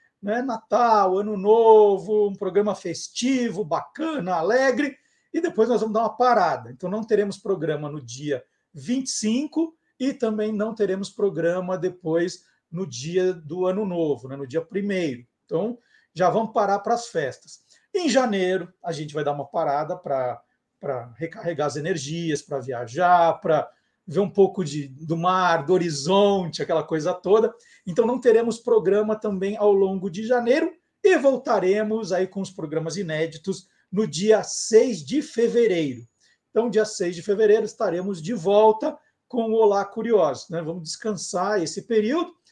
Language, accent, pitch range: Portuguese, Brazilian, 180-230 Hz